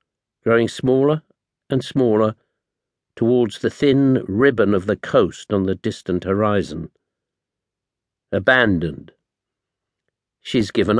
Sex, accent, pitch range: male, British, 105-135 Hz